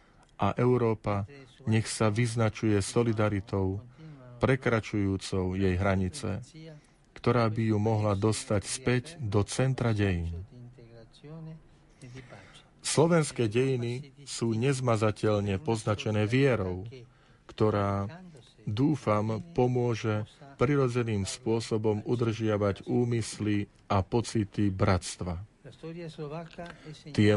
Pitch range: 105-130 Hz